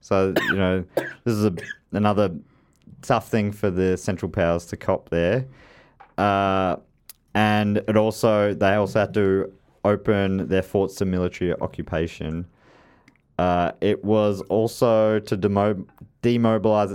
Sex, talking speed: male, 125 wpm